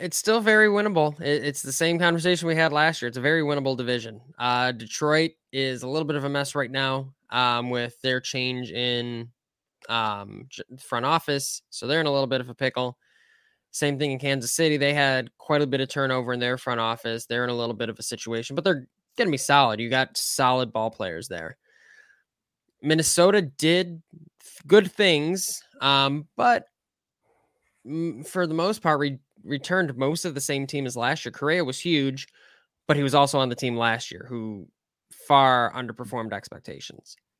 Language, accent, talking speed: English, American, 190 wpm